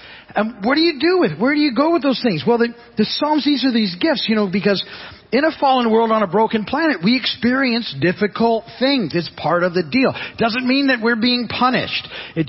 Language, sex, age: English, male, 40-59